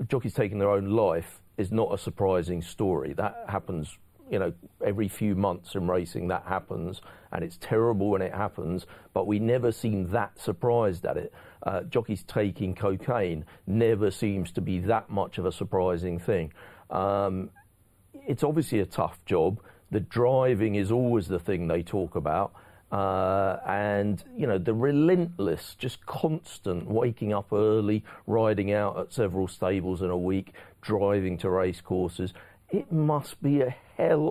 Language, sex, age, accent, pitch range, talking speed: English, male, 40-59, British, 90-110 Hz, 160 wpm